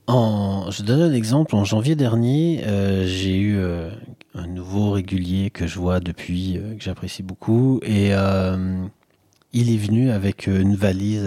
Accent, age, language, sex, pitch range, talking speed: French, 30-49, French, male, 100-130 Hz, 165 wpm